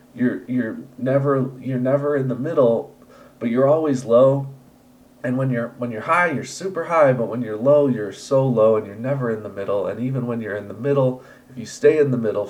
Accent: American